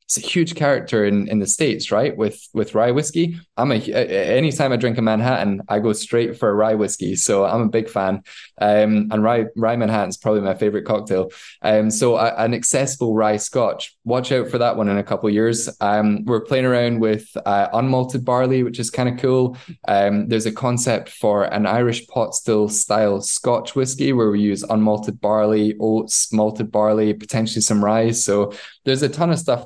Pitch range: 105-125 Hz